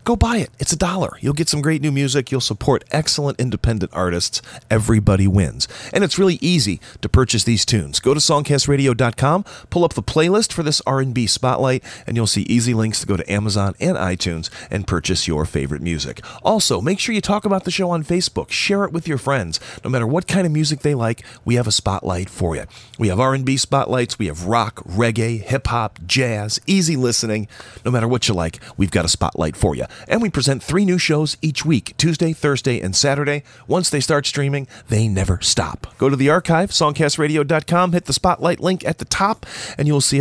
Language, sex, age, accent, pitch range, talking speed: English, male, 40-59, American, 110-155 Hz, 210 wpm